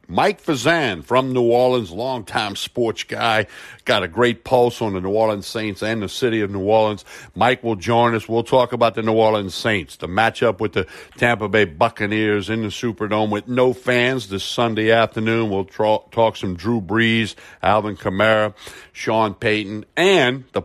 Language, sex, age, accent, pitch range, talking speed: English, male, 60-79, American, 100-120 Hz, 180 wpm